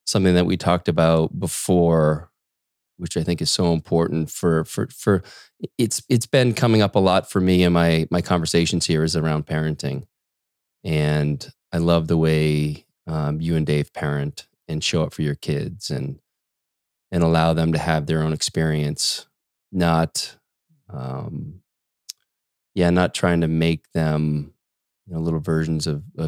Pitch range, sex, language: 75-90 Hz, male, English